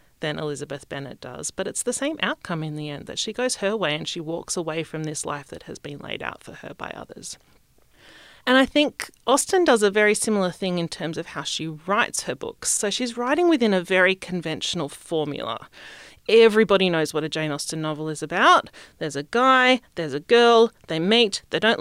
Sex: female